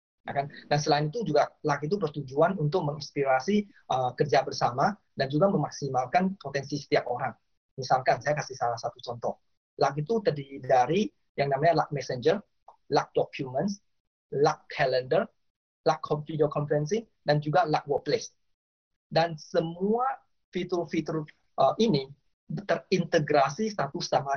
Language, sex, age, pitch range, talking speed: Indonesian, male, 20-39, 140-180 Hz, 125 wpm